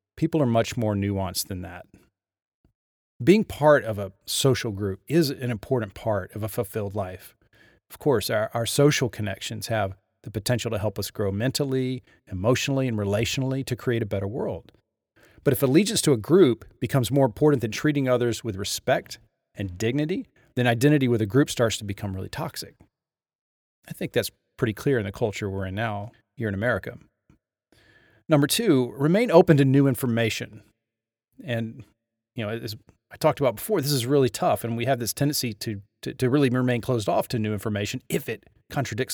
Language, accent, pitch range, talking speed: English, American, 105-130 Hz, 185 wpm